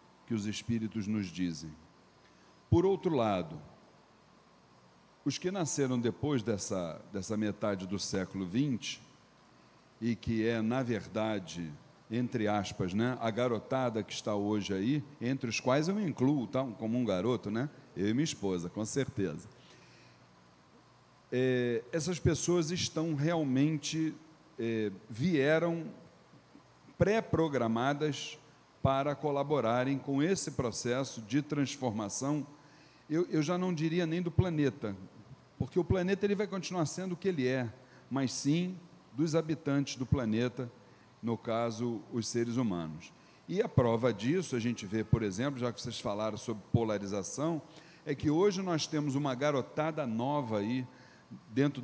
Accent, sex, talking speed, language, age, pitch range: Brazilian, male, 135 wpm, Portuguese, 40-59, 110-150 Hz